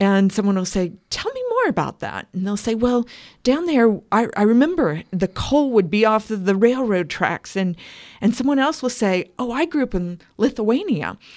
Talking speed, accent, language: 205 wpm, American, English